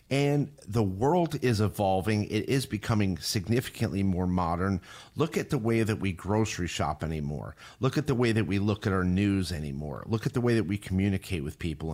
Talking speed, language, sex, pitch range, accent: 200 wpm, English, male, 90-110 Hz, American